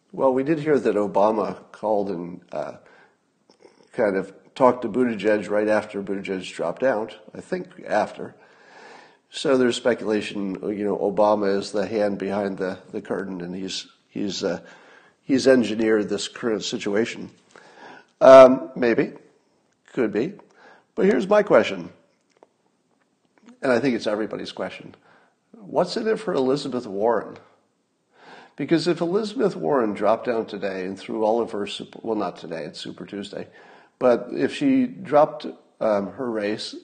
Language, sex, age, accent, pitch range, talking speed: English, male, 50-69, American, 105-155 Hz, 145 wpm